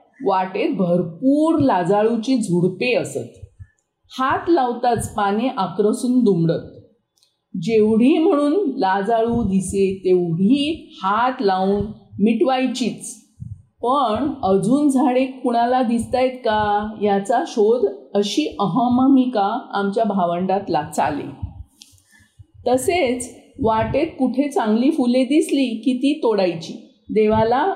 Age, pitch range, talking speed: 50-69, 195-260 Hz, 90 wpm